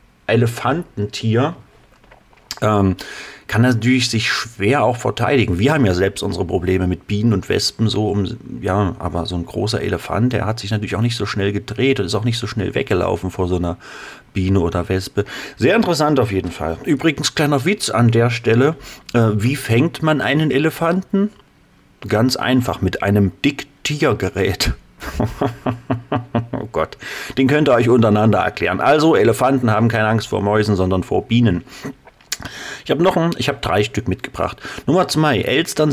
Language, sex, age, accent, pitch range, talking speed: German, male, 40-59, German, 100-135 Hz, 165 wpm